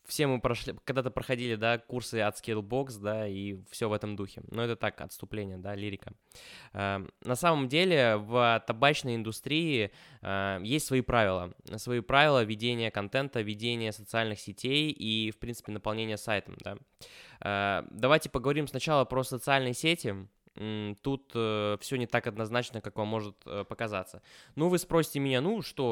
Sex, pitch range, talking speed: male, 105-130 Hz, 160 wpm